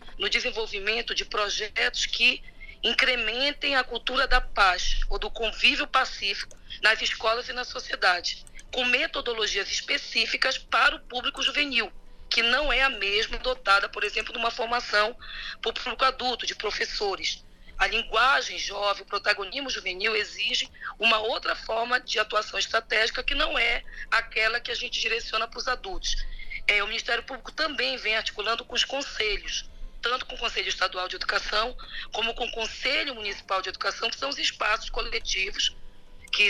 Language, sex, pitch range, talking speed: Portuguese, female, 210-260 Hz, 160 wpm